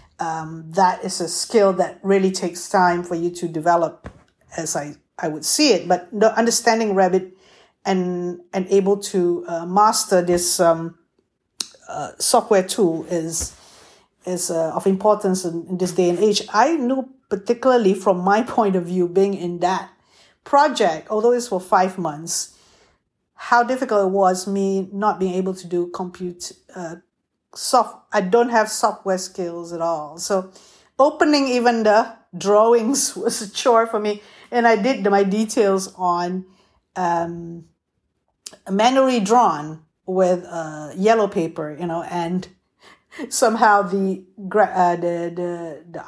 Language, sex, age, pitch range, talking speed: English, female, 50-69, 175-215 Hz, 150 wpm